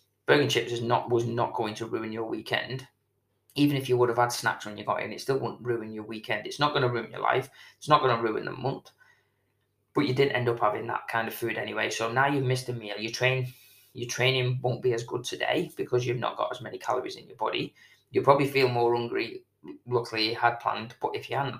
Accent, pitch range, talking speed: British, 115-130 Hz, 245 wpm